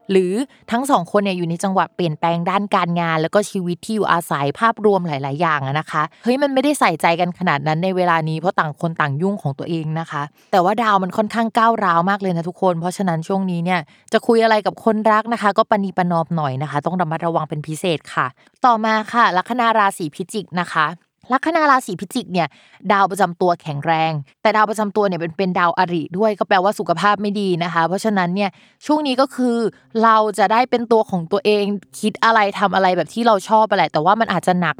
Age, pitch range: 20-39, 170-220 Hz